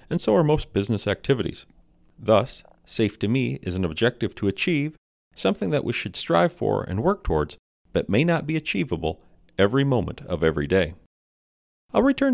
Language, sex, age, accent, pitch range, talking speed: English, male, 40-59, American, 85-130 Hz, 175 wpm